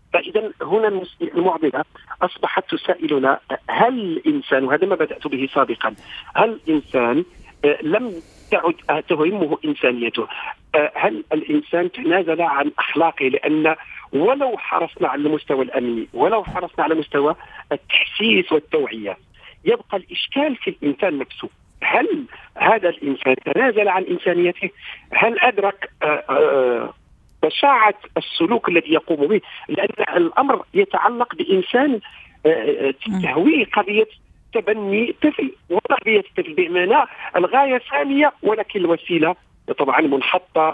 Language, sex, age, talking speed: Arabic, male, 50-69, 110 wpm